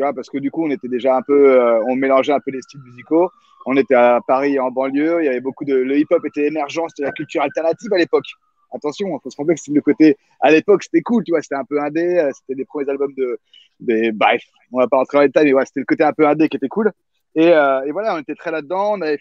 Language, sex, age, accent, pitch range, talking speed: French, male, 30-49, French, 135-175 Hz, 290 wpm